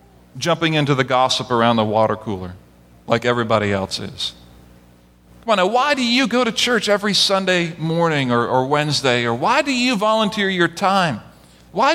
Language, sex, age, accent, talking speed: English, male, 40-59, American, 175 wpm